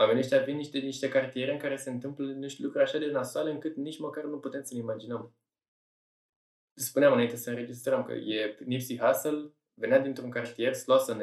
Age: 20-39